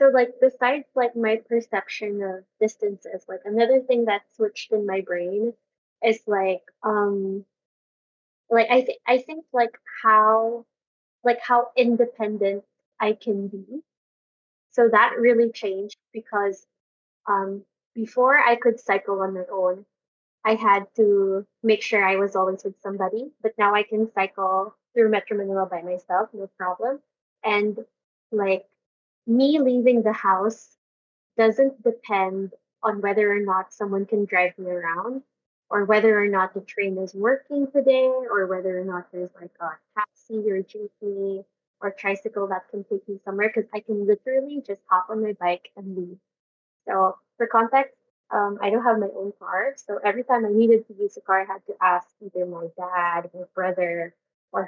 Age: 20-39